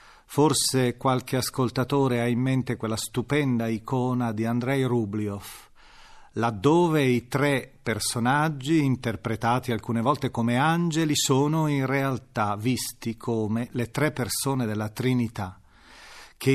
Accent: native